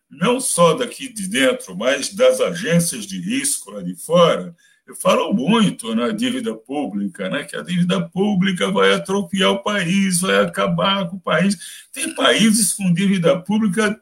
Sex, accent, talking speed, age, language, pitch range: male, Brazilian, 165 wpm, 60-79, Portuguese, 175-225 Hz